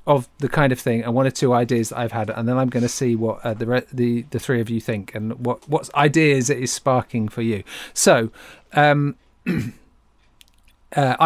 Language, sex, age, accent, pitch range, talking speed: English, male, 40-59, British, 120-160 Hz, 220 wpm